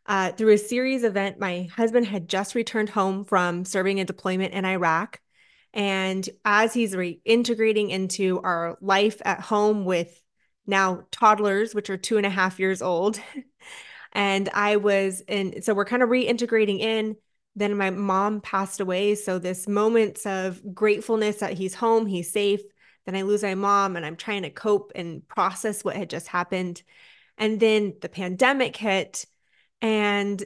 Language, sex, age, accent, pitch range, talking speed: English, female, 20-39, American, 190-225 Hz, 165 wpm